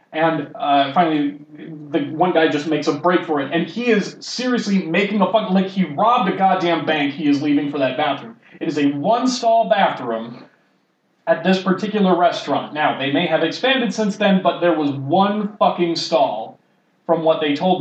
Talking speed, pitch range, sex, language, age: 190 wpm, 155-210 Hz, male, English, 30-49